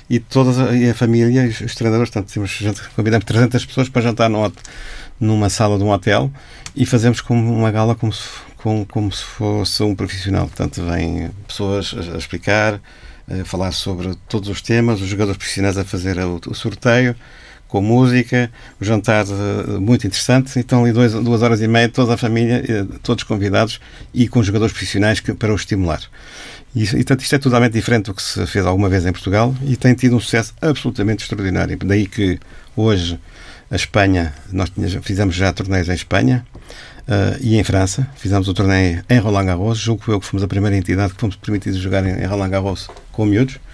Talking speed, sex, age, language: 200 wpm, male, 50-69, Portuguese